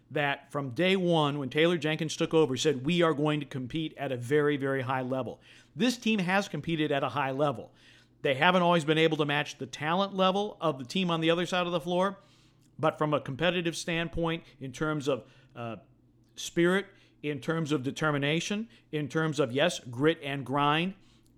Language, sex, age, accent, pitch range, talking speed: English, male, 50-69, American, 135-170 Hz, 195 wpm